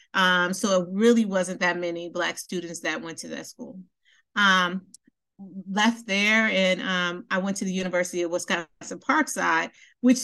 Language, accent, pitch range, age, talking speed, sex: English, American, 185-230 Hz, 40-59, 165 wpm, female